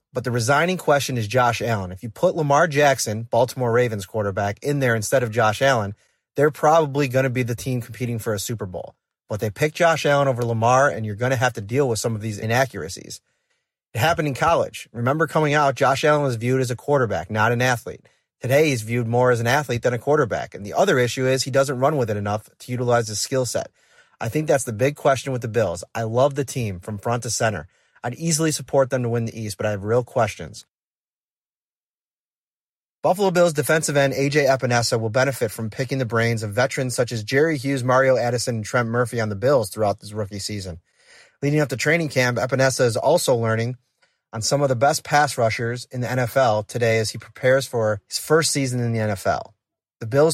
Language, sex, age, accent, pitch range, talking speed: English, male, 30-49, American, 115-140 Hz, 225 wpm